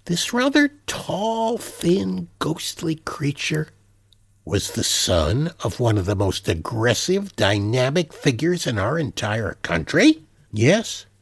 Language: English